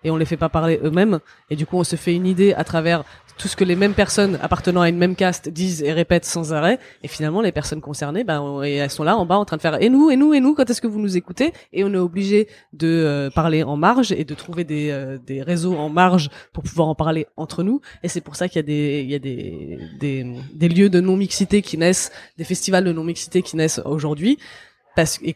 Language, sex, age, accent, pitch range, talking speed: French, female, 20-39, French, 165-230 Hz, 265 wpm